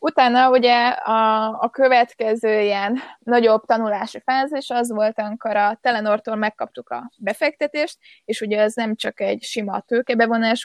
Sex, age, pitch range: female, 20-39, 205-240 Hz